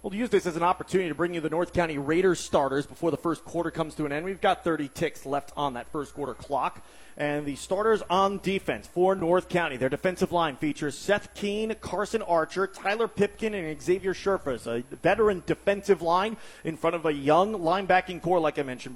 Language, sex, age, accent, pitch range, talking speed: English, male, 30-49, American, 165-210 Hz, 210 wpm